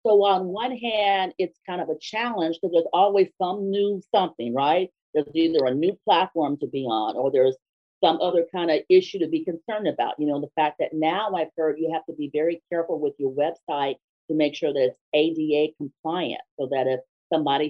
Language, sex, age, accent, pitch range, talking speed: English, female, 40-59, American, 140-210 Hz, 215 wpm